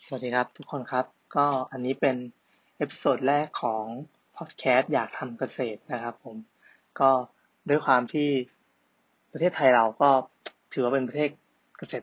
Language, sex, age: Thai, male, 20-39